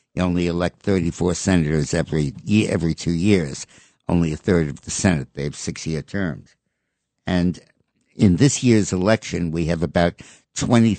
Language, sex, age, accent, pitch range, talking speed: English, male, 60-79, American, 80-95 Hz, 170 wpm